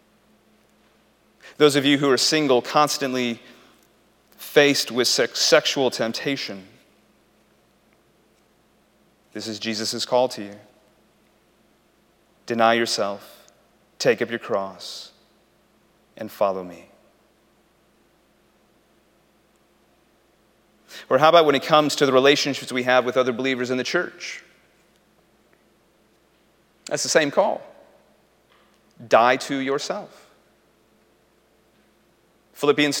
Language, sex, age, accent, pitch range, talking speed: English, male, 30-49, American, 125-180 Hz, 95 wpm